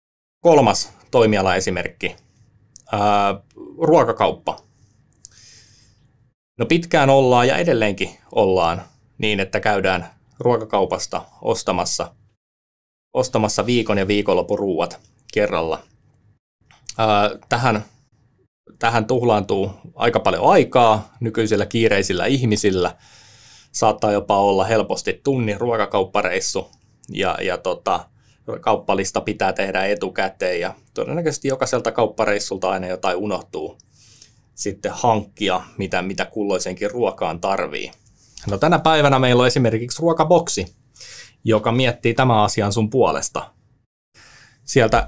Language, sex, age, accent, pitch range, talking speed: Finnish, male, 20-39, native, 105-125 Hz, 90 wpm